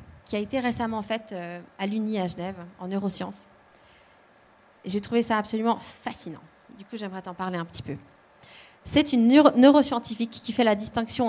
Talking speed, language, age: 165 wpm, French, 30-49